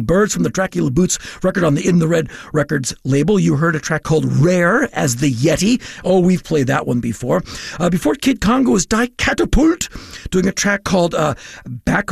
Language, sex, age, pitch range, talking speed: English, male, 50-69, 150-200 Hz, 200 wpm